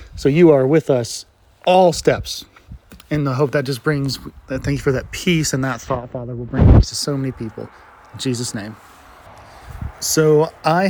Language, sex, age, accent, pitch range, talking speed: English, male, 30-49, American, 120-150 Hz, 185 wpm